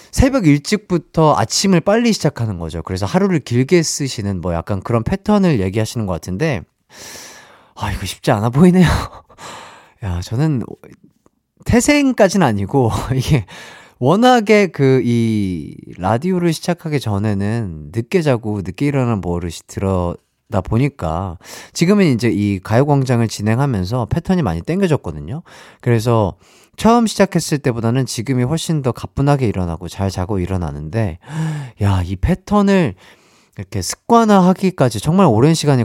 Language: Korean